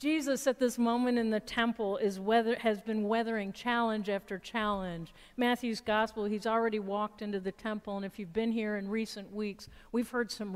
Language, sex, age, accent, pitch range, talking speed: English, female, 50-69, American, 175-230 Hz, 195 wpm